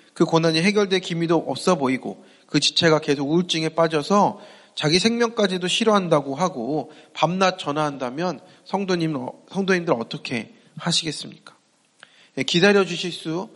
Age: 30-49